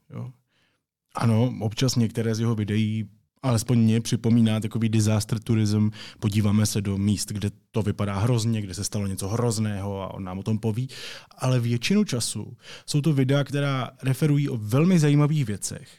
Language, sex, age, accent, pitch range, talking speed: Czech, male, 20-39, native, 105-130 Hz, 160 wpm